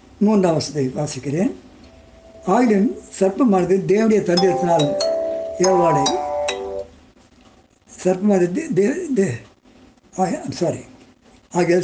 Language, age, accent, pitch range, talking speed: Tamil, 60-79, native, 165-205 Hz, 60 wpm